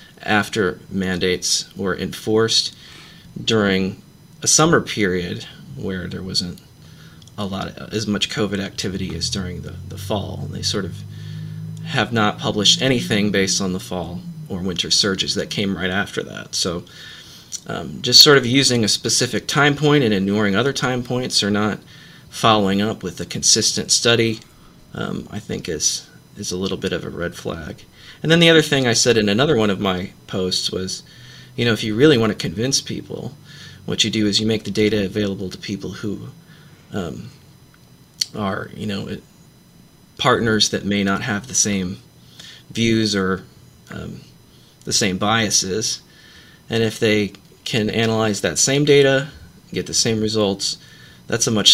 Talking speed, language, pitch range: 170 wpm, English, 95-115 Hz